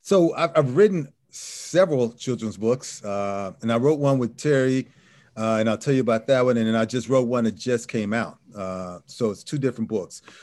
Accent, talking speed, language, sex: American, 220 wpm, English, male